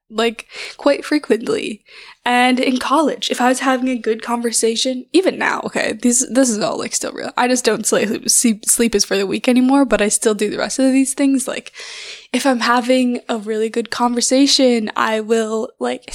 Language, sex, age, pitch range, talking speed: English, female, 10-29, 220-265 Hz, 195 wpm